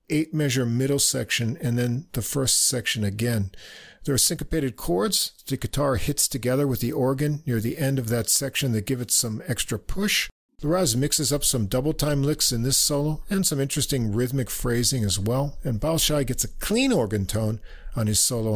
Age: 50-69